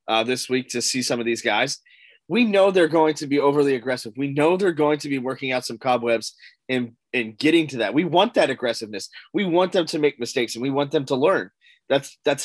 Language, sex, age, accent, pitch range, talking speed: English, male, 20-39, American, 130-160 Hz, 240 wpm